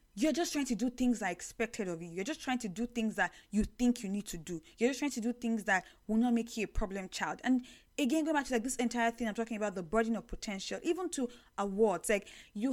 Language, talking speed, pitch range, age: English, 275 wpm, 185-240 Hz, 10-29